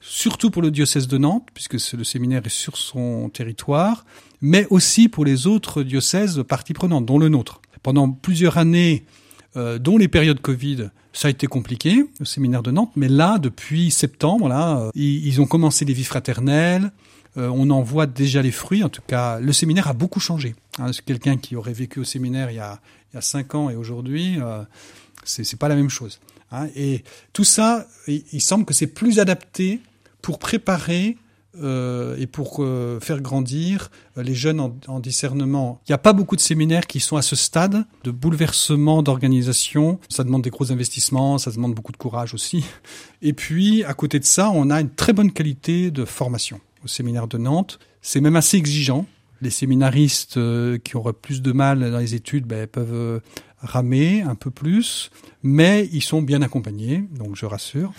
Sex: male